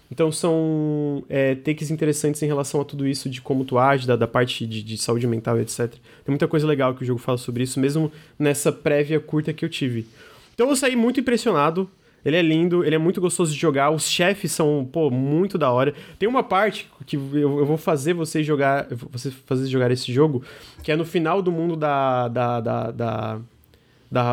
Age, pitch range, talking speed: 20-39, 135-165 Hz, 215 wpm